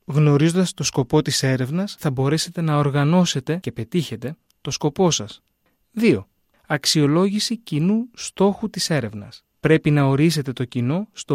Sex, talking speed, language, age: male, 135 wpm, Greek, 30-49